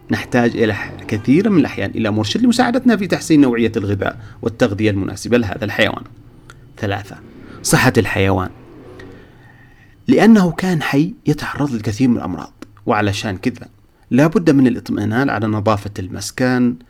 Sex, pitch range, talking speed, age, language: male, 105-140 Hz, 125 wpm, 30-49, Arabic